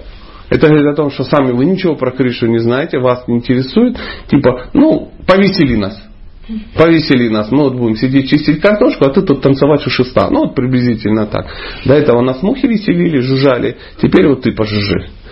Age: 40-59